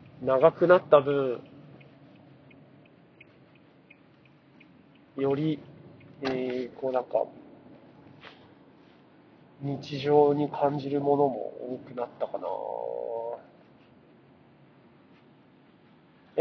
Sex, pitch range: male, 130-165 Hz